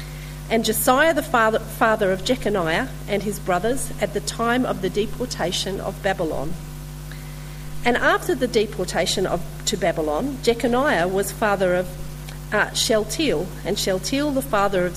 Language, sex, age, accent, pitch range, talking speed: English, female, 40-59, Australian, 155-225 Hz, 145 wpm